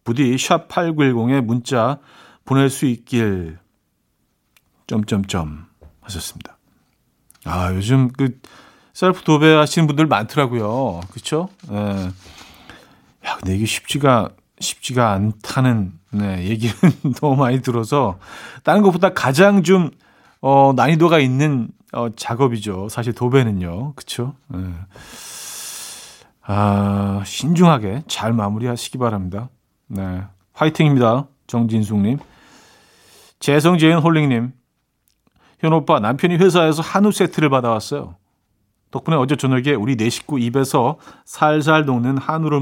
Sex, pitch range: male, 105-155 Hz